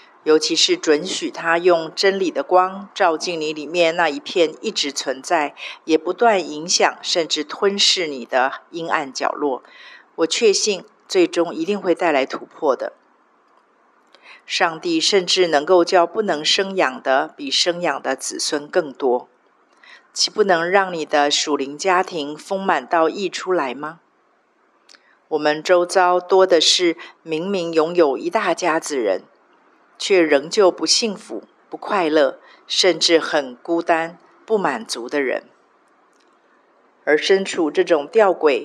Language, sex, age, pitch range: Chinese, female, 50-69, 155-200 Hz